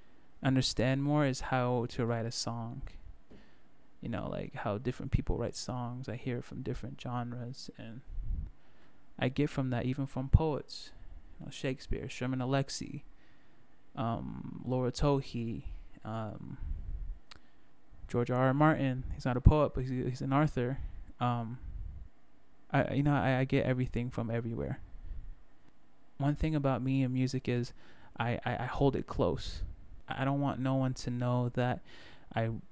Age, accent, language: 20-39, American, English